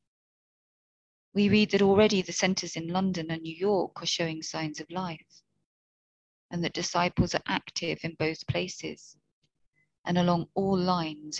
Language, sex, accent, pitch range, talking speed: English, female, British, 155-185 Hz, 145 wpm